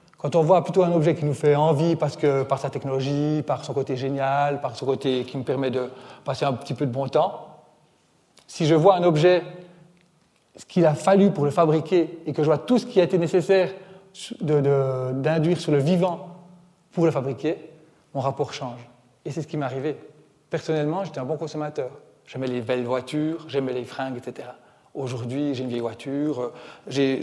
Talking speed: 195 wpm